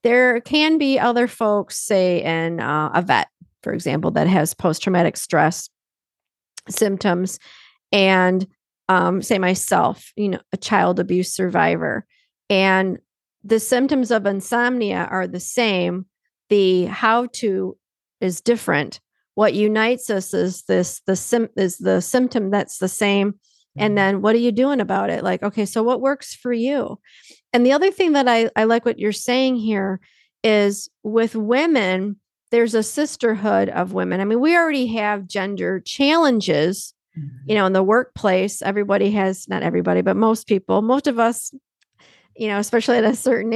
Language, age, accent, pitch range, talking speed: English, 40-59, American, 190-240 Hz, 160 wpm